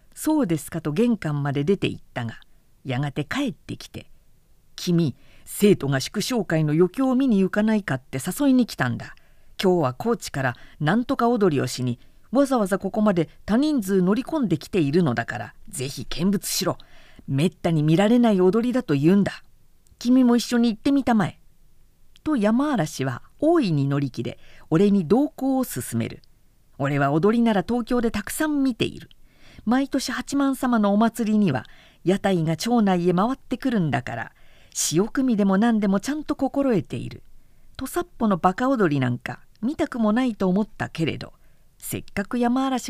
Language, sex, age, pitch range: Japanese, female, 50-69, 155-245 Hz